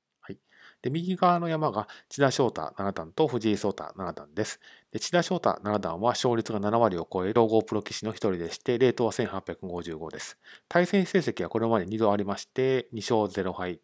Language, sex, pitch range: Japanese, male, 105-145 Hz